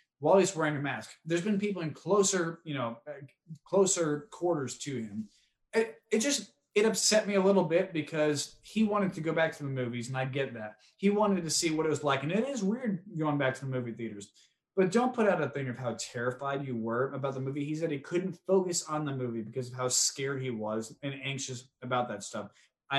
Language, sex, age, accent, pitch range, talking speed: English, male, 20-39, American, 130-175 Hz, 240 wpm